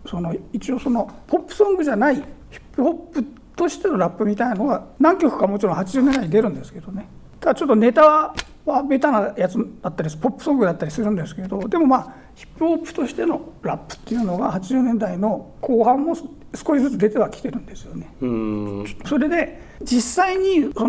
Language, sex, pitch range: Japanese, male, 210-295 Hz